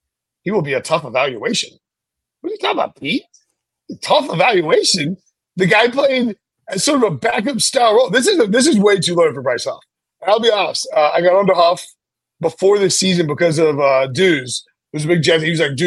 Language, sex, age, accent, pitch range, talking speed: English, male, 30-49, American, 160-195 Hz, 225 wpm